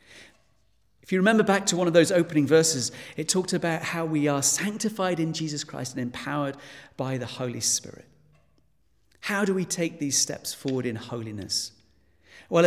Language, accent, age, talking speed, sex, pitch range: English, British, 40-59, 170 wpm, male, 135-200 Hz